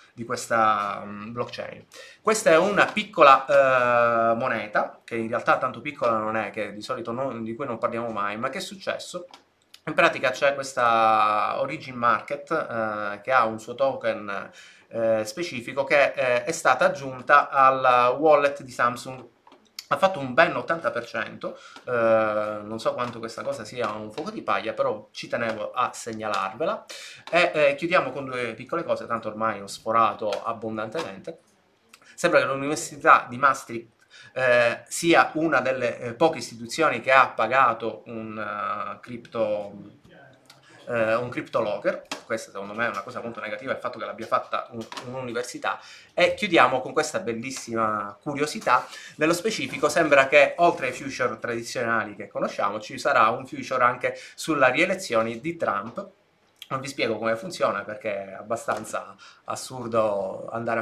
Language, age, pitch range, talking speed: Italian, 30-49, 115-145 Hz, 150 wpm